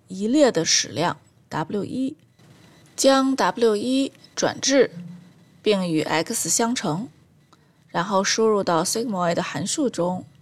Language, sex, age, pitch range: Chinese, female, 20-39, 175-235 Hz